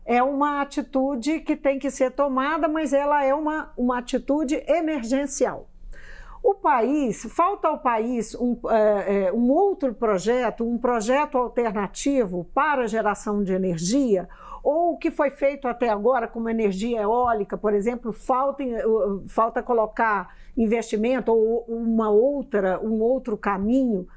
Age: 50-69